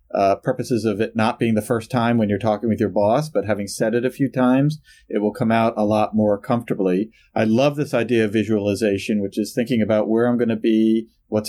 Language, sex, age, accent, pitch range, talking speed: English, male, 40-59, American, 105-120 Hz, 240 wpm